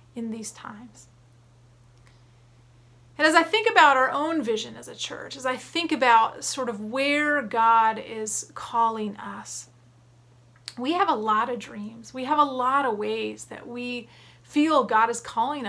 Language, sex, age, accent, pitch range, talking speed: English, female, 30-49, American, 220-280 Hz, 165 wpm